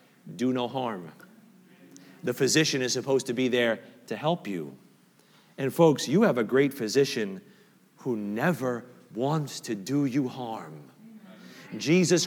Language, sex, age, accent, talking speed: English, male, 40-59, American, 135 wpm